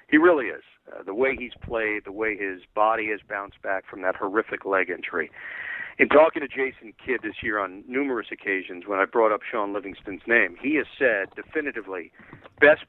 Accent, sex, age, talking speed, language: American, male, 50-69, 195 wpm, English